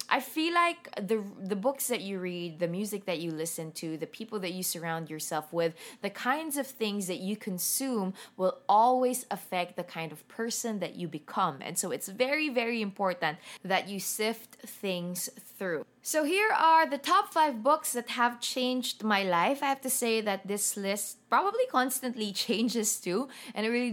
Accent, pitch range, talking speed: Filipino, 165-230 Hz, 190 wpm